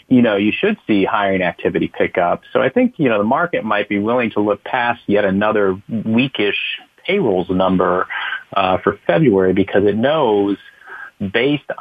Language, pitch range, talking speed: English, 95-105 Hz, 175 wpm